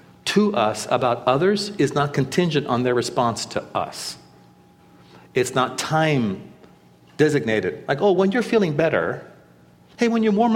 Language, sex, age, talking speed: English, male, 50-69, 150 wpm